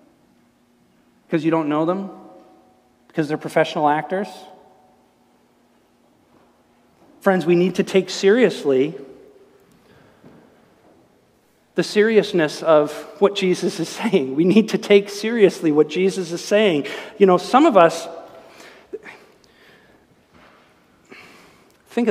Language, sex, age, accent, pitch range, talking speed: English, male, 50-69, American, 155-220 Hz, 100 wpm